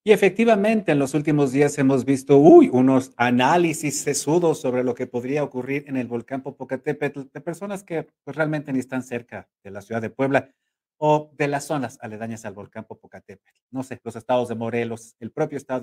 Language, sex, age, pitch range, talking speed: Spanish, male, 50-69, 120-160 Hz, 195 wpm